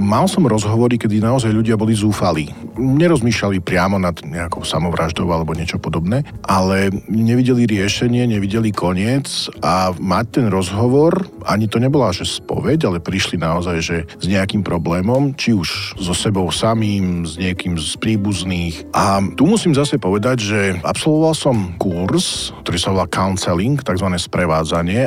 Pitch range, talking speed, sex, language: 95-125 Hz, 145 wpm, male, Slovak